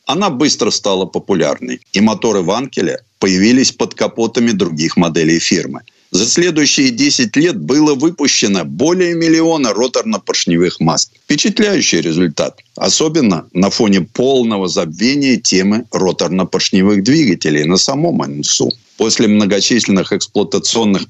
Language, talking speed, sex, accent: Russian, 110 wpm, male, native